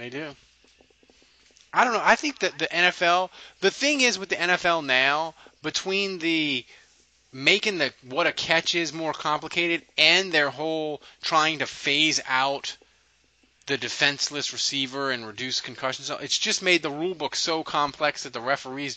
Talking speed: 160 wpm